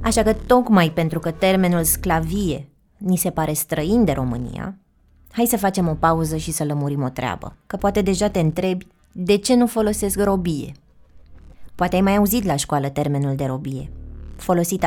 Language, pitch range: Romanian, 140-190 Hz